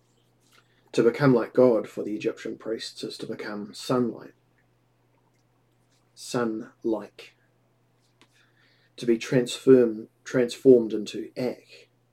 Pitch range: 105-125 Hz